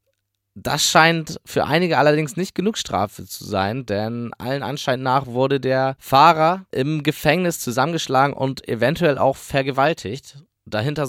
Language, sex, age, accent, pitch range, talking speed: German, male, 20-39, German, 115-140 Hz, 135 wpm